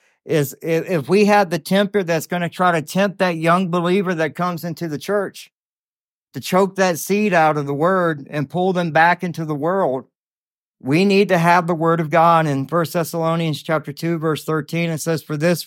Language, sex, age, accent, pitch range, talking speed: English, male, 50-69, American, 155-185 Hz, 205 wpm